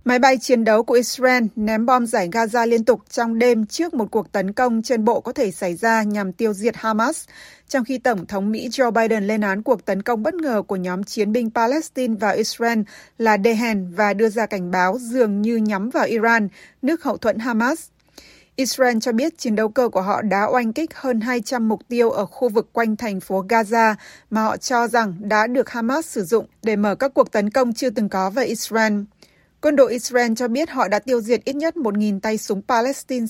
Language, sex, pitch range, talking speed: Vietnamese, female, 210-250 Hz, 225 wpm